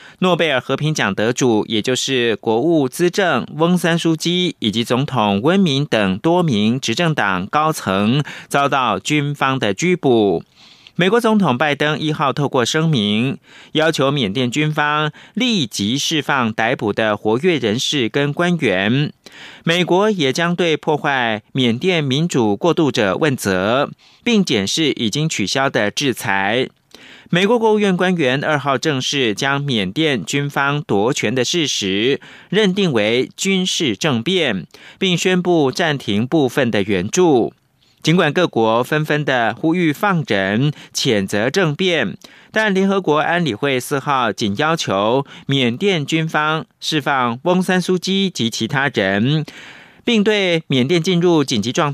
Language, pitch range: Russian, 130-175 Hz